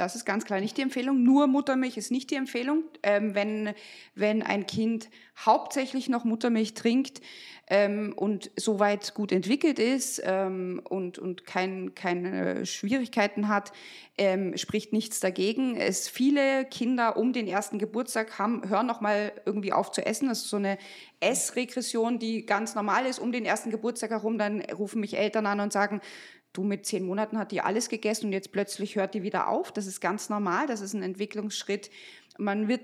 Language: German